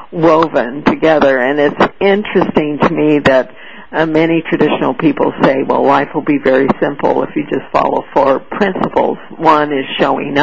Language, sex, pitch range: English, female, 145-170 Hz